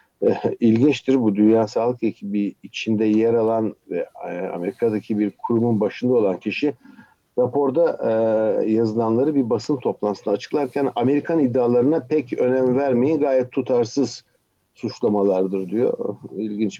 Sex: male